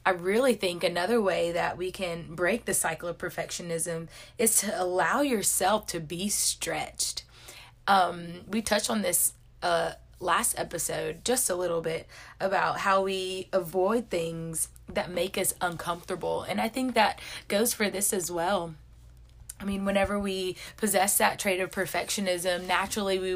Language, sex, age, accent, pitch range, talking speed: English, female, 20-39, American, 170-195 Hz, 155 wpm